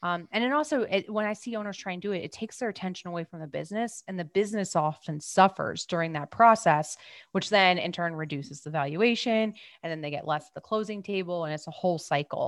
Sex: female